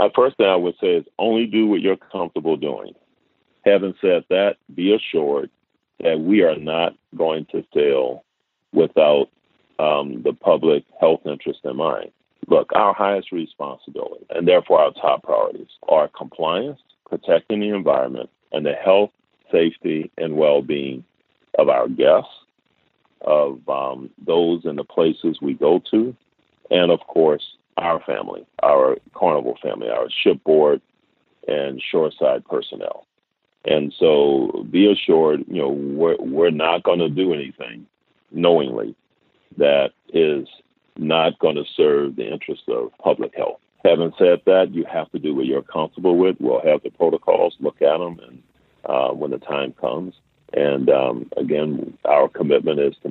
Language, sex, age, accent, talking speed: English, male, 40-59, American, 150 wpm